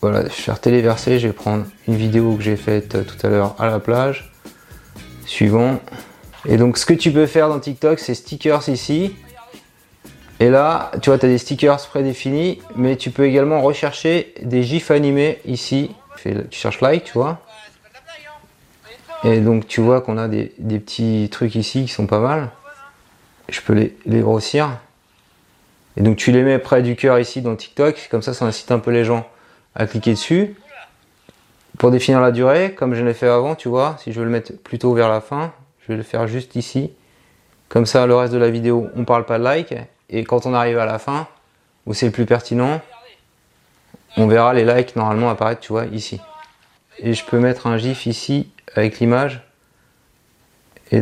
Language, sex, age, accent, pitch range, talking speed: French, male, 30-49, French, 115-140 Hz, 200 wpm